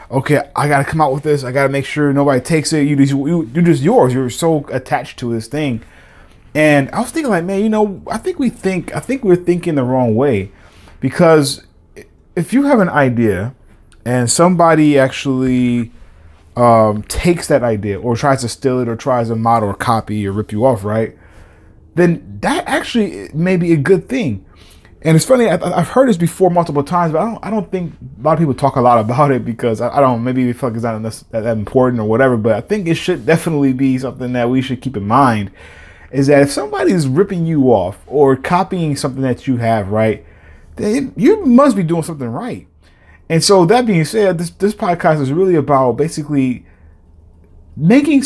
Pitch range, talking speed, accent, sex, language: 115-175 Hz, 210 wpm, American, male, English